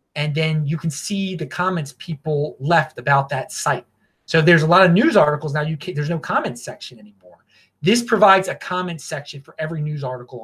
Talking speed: 205 wpm